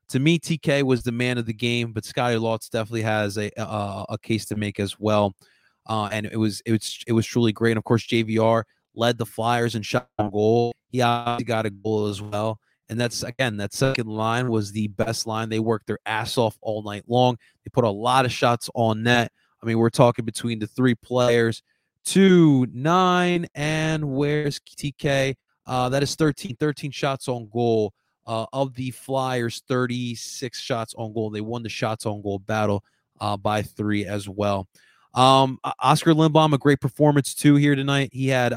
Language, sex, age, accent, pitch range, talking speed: English, male, 30-49, American, 110-135 Hz, 200 wpm